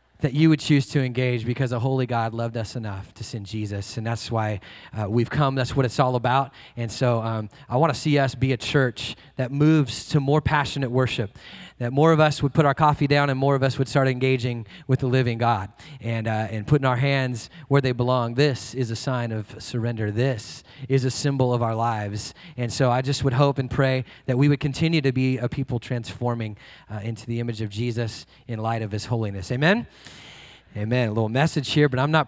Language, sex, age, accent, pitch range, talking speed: English, male, 30-49, American, 115-135 Hz, 230 wpm